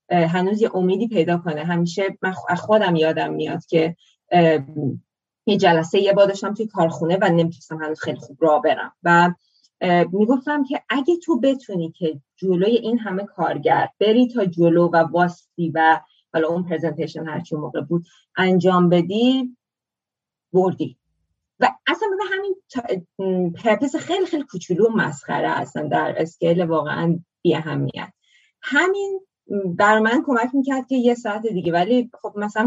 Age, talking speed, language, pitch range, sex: 20-39, 145 wpm, Persian, 165-245 Hz, female